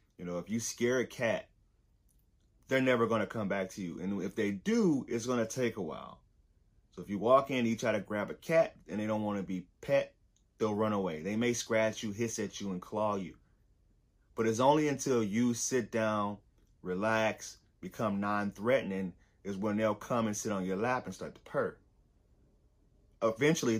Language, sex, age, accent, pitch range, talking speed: English, male, 30-49, American, 95-120 Hz, 205 wpm